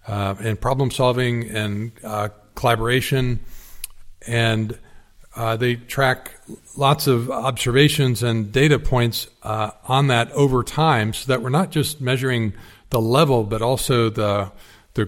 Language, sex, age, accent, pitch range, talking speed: English, male, 50-69, American, 110-130 Hz, 130 wpm